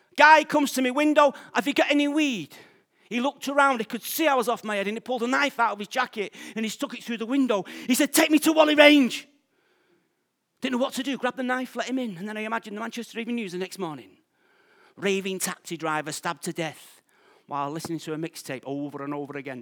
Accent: British